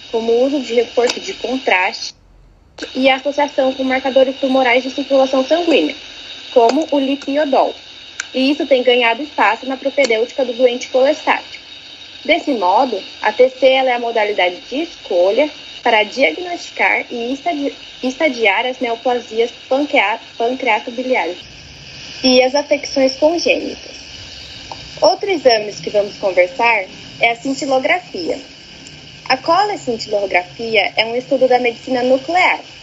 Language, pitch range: Portuguese, 235-290 Hz